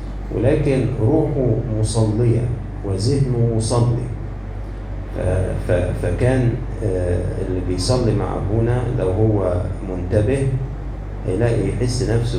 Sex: male